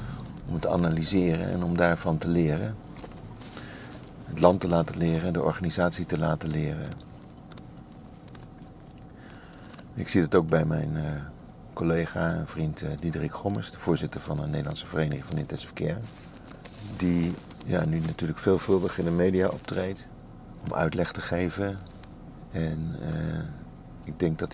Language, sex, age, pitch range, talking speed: Dutch, male, 50-69, 80-95 Hz, 140 wpm